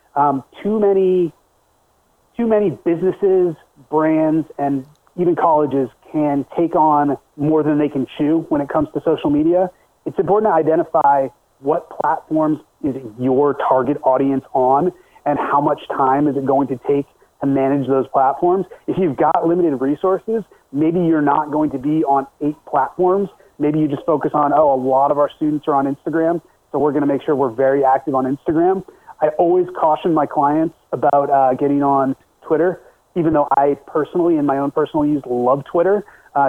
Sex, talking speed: male, 180 wpm